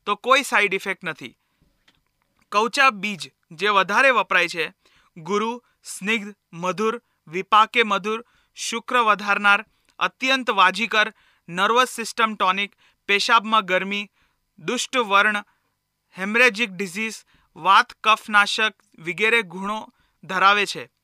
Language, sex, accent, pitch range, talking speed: Gujarati, male, native, 190-230 Hz, 90 wpm